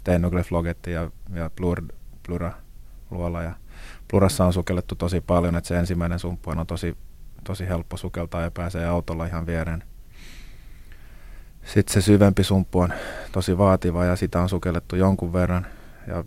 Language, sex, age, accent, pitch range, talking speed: Finnish, male, 30-49, native, 85-95 Hz, 150 wpm